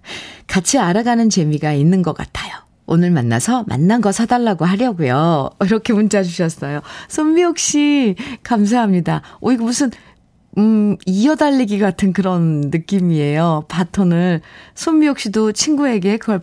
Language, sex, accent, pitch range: Korean, female, native, 165-255 Hz